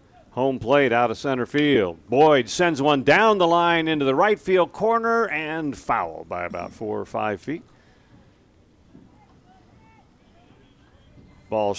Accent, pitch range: American, 110-150 Hz